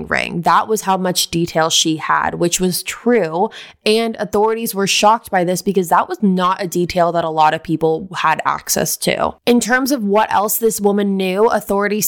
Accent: American